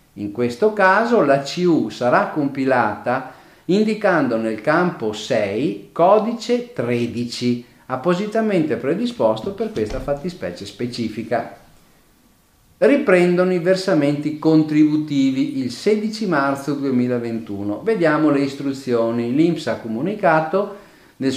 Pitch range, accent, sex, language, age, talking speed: 120-190 Hz, native, male, Italian, 50-69, 95 wpm